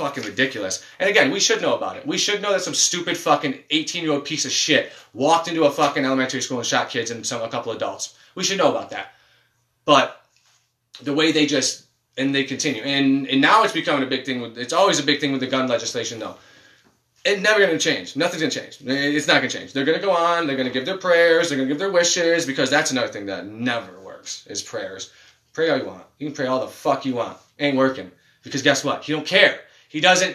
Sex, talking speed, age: male, 240 wpm, 20-39